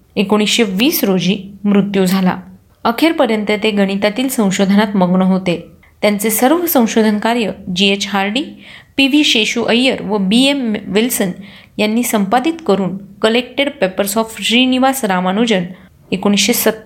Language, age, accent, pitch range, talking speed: Marathi, 30-49, native, 195-255 Hz, 115 wpm